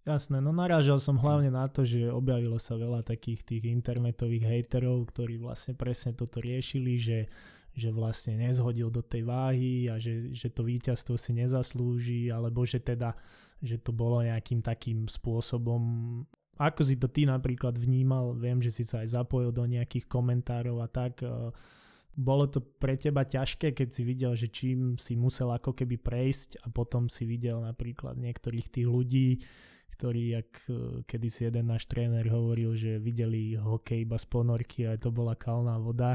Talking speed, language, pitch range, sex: 170 wpm, Slovak, 115-130 Hz, male